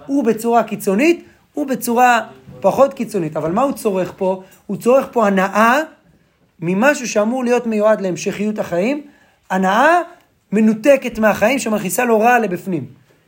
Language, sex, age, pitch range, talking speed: Hebrew, male, 40-59, 165-235 Hz, 130 wpm